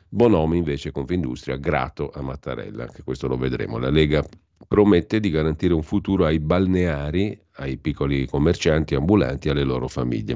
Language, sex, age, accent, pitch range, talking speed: Italian, male, 50-69, native, 70-85 Hz, 155 wpm